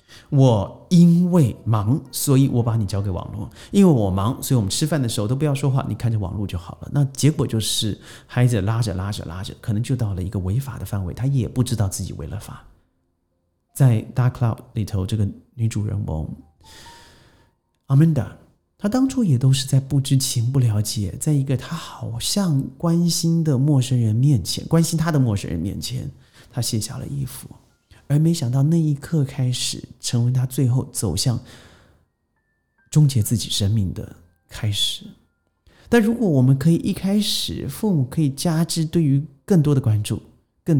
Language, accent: Chinese, native